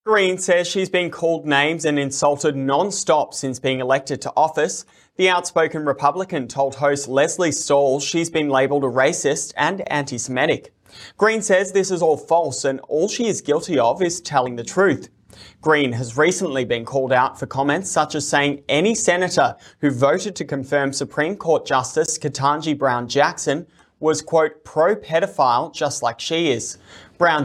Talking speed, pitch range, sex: 165 wpm, 135-170 Hz, male